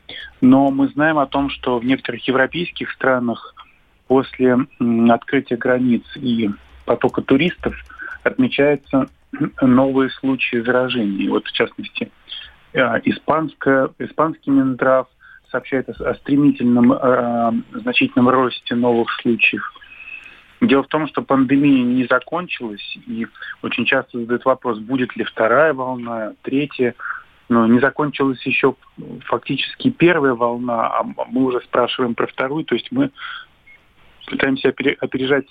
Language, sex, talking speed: Russian, male, 115 wpm